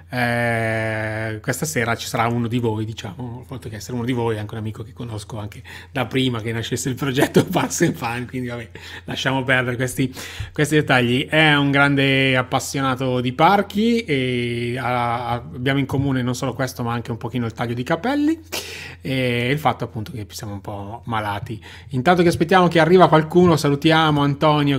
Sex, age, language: male, 30-49, Italian